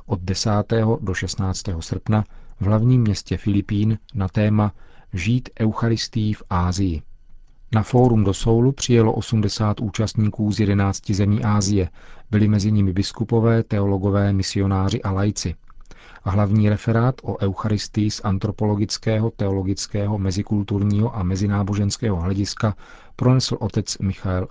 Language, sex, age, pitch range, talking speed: Czech, male, 40-59, 100-115 Hz, 120 wpm